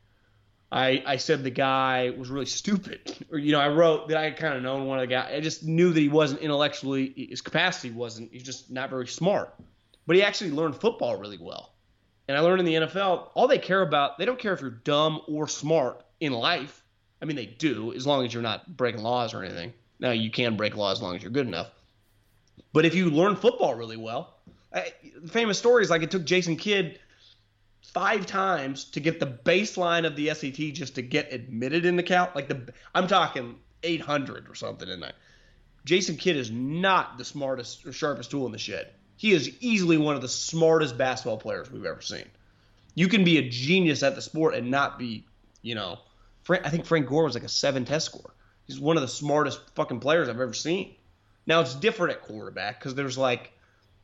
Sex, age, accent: male, 30-49, American